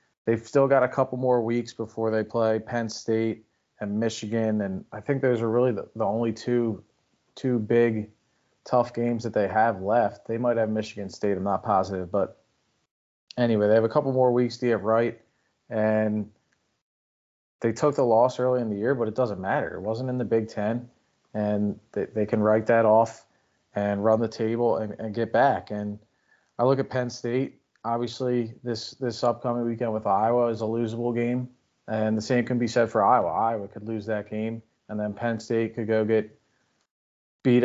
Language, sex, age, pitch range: English, male, 30-49, 110-120 Hz